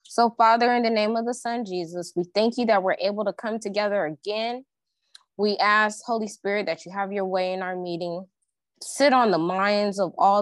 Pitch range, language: 195-245 Hz, English